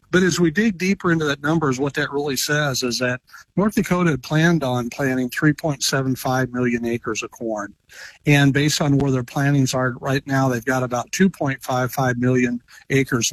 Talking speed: 180 wpm